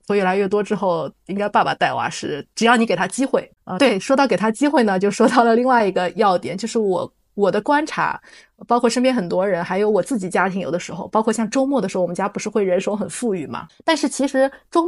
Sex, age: female, 20-39